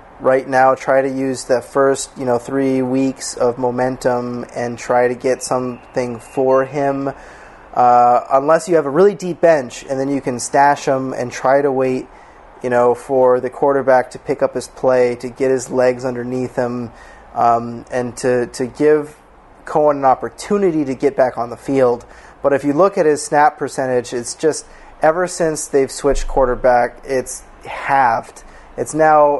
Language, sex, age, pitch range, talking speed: English, male, 30-49, 125-145 Hz, 180 wpm